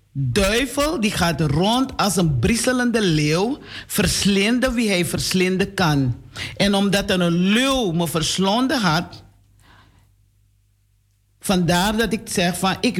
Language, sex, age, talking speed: Dutch, male, 50-69, 125 wpm